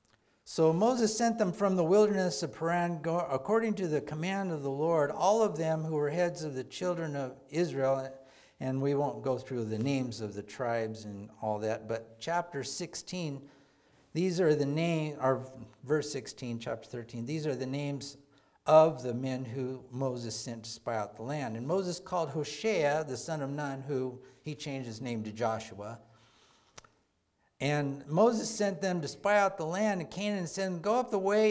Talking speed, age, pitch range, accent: 190 wpm, 50-69, 135-180 Hz, American